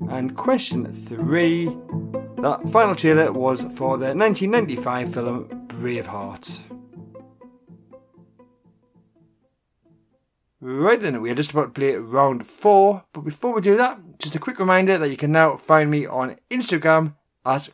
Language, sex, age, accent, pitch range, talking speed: English, male, 30-49, British, 125-190 Hz, 135 wpm